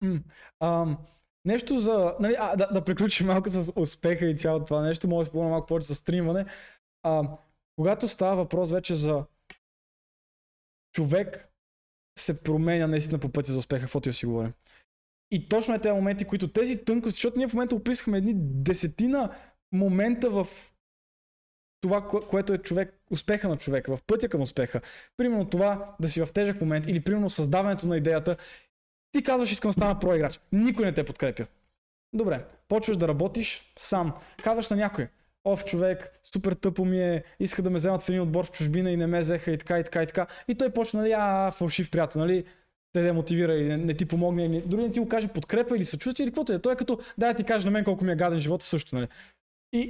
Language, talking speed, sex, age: Bulgarian, 200 wpm, male, 20-39